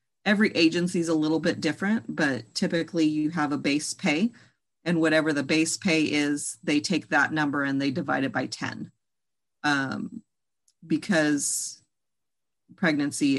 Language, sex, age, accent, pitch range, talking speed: English, female, 40-59, American, 140-170 Hz, 150 wpm